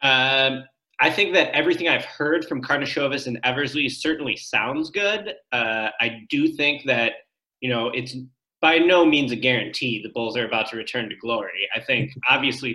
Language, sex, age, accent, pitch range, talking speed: English, male, 20-39, American, 115-150 Hz, 180 wpm